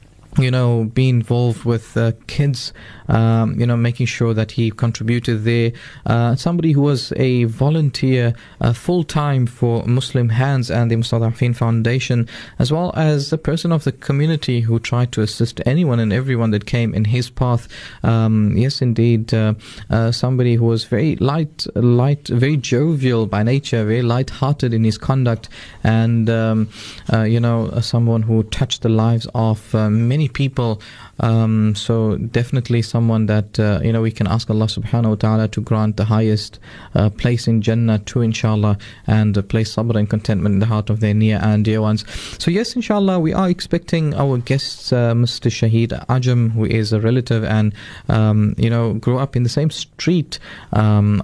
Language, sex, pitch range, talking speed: English, male, 110-135 Hz, 180 wpm